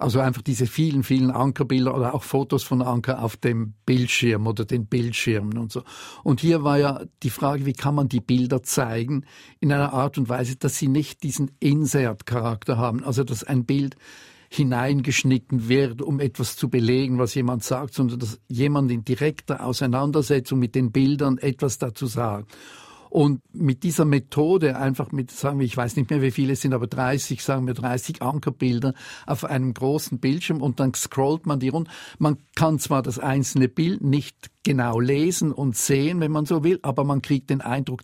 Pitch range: 125-145 Hz